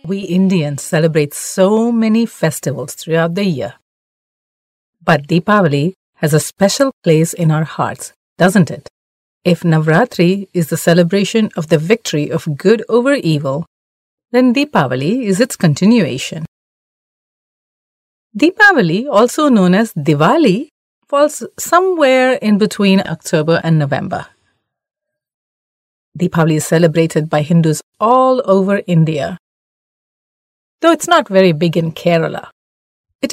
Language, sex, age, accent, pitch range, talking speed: English, female, 40-59, Indian, 160-225 Hz, 115 wpm